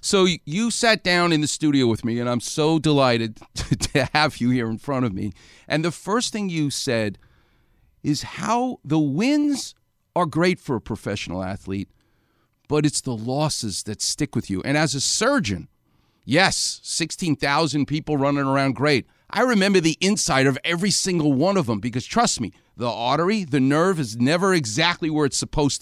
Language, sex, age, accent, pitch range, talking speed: English, male, 50-69, American, 120-185 Hz, 185 wpm